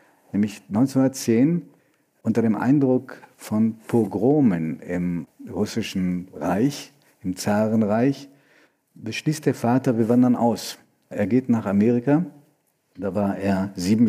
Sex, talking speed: male, 110 wpm